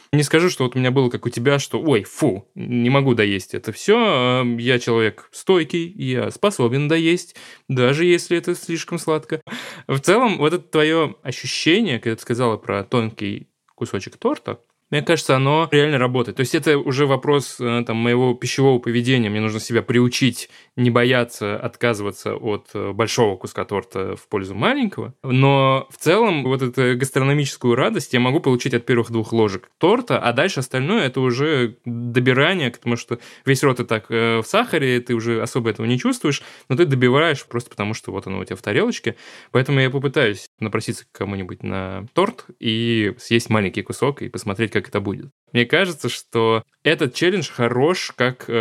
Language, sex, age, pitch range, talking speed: Russian, male, 20-39, 115-140 Hz, 175 wpm